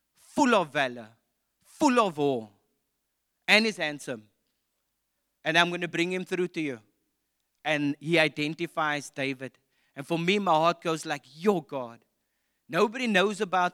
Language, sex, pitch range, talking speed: English, male, 140-205 Hz, 150 wpm